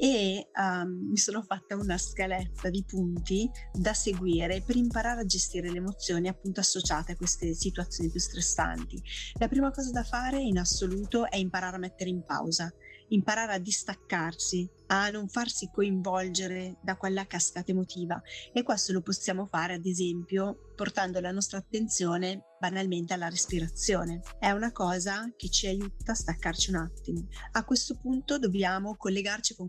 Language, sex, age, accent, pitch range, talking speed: Italian, female, 30-49, native, 175-205 Hz, 155 wpm